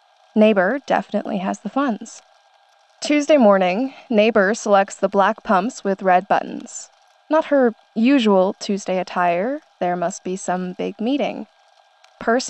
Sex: female